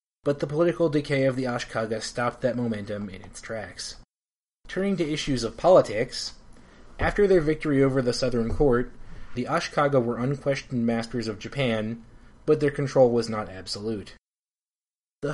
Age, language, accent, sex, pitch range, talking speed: 30-49, English, American, male, 115-145 Hz, 155 wpm